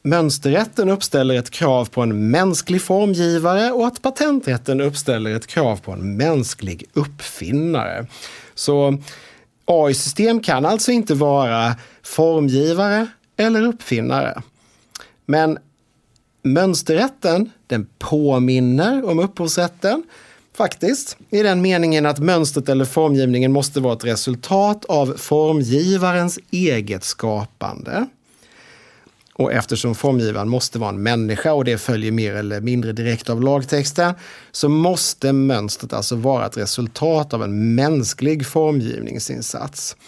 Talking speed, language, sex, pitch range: 115 wpm, Swedish, male, 125-170 Hz